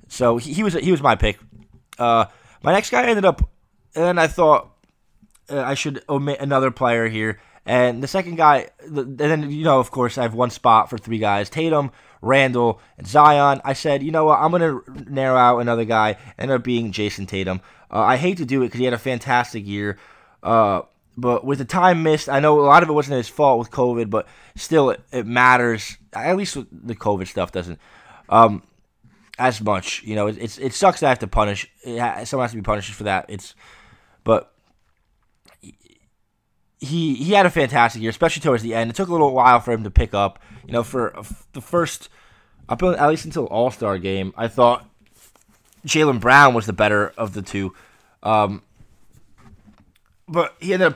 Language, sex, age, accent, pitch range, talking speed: English, male, 20-39, American, 105-140 Hz, 205 wpm